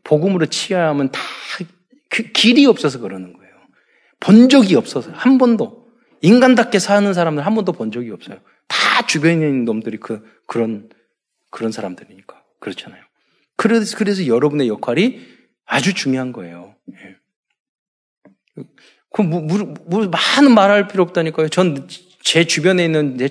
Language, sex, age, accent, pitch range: Korean, male, 40-59, native, 135-210 Hz